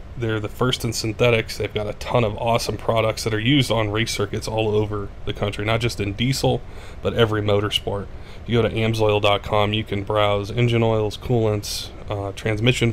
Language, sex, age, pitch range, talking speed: English, male, 20-39, 105-115 Hz, 195 wpm